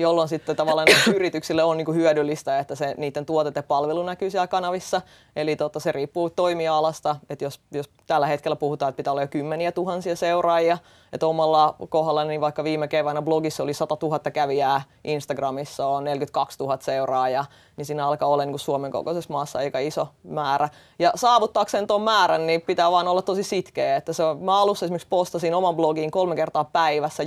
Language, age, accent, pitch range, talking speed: Finnish, 20-39, native, 150-175 Hz, 180 wpm